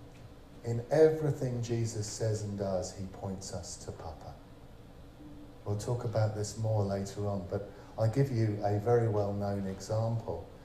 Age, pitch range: 40-59, 95-120 Hz